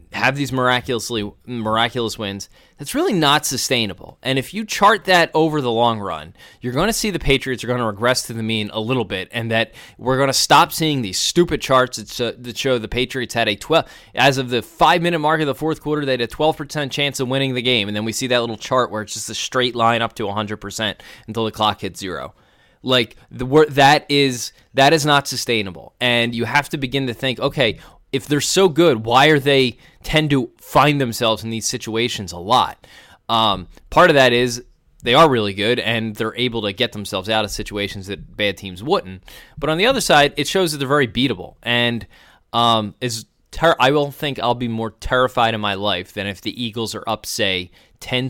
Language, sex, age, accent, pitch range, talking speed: English, male, 20-39, American, 110-135 Hz, 220 wpm